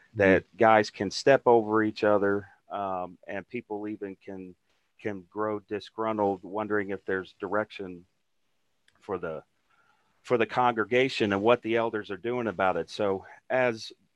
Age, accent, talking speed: 40-59, American, 145 wpm